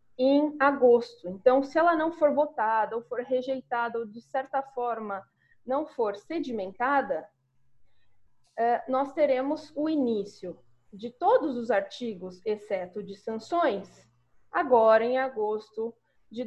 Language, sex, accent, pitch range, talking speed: Portuguese, female, Brazilian, 210-295 Hz, 120 wpm